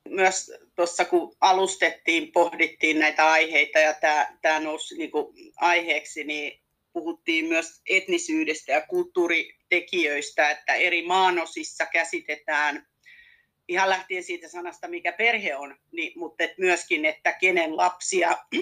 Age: 40-59